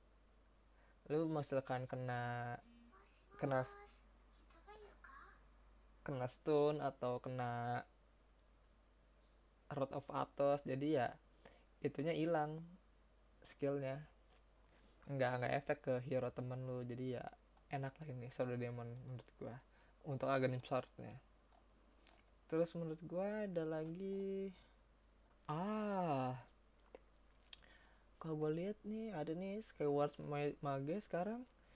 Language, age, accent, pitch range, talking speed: Indonesian, 20-39, native, 130-165 Hz, 95 wpm